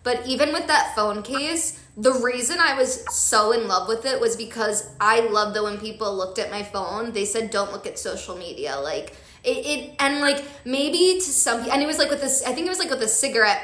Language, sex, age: English, female, 10-29